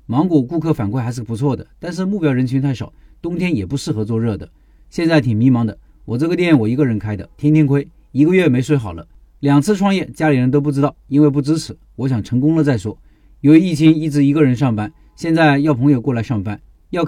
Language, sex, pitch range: Chinese, male, 110-155 Hz